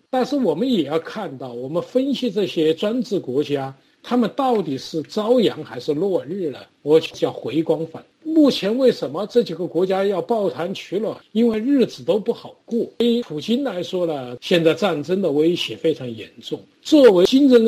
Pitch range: 165-245 Hz